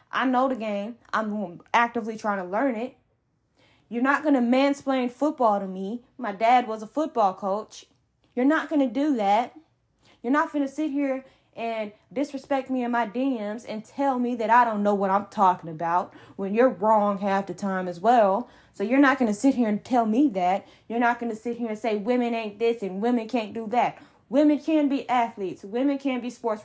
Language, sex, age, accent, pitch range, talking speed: English, female, 10-29, American, 220-280 Hz, 215 wpm